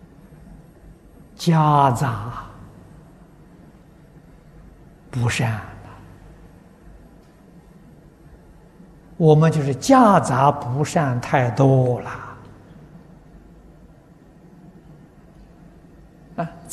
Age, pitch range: 50-69, 130-170 Hz